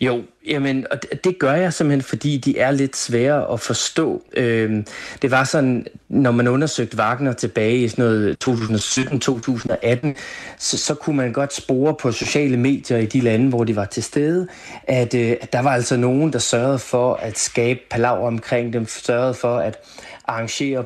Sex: male